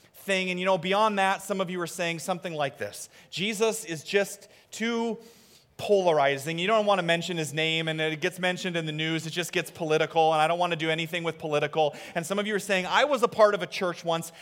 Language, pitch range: English, 150-195 Hz